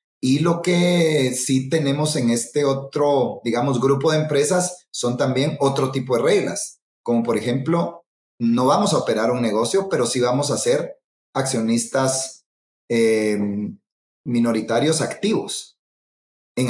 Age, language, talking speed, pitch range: 30-49, Spanish, 135 wpm, 115-145 Hz